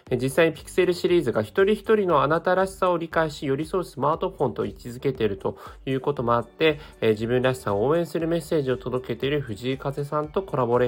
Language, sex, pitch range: Japanese, male, 110-170 Hz